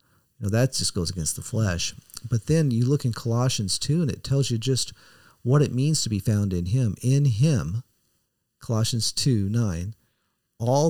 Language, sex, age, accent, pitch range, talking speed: English, male, 40-59, American, 115-155 Hz, 175 wpm